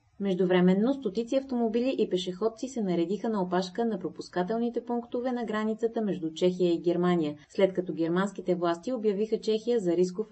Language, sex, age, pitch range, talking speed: Bulgarian, female, 20-39, 175-225 Hz, 150 wpm